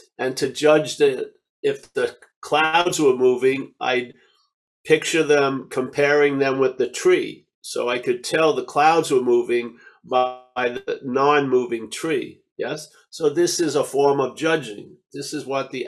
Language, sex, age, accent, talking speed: English, male, 50-69, American, 155 wpm